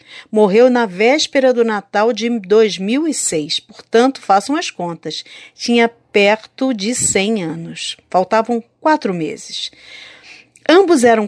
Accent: Brazilian